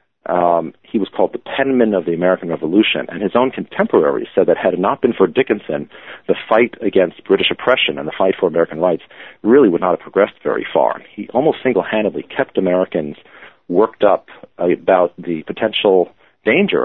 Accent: American